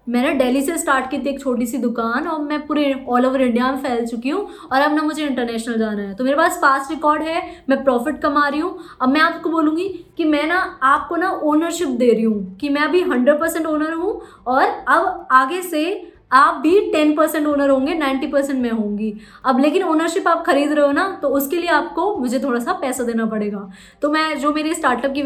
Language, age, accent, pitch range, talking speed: Hindi, 20-39, native, 255-320 Hz, 225 wpm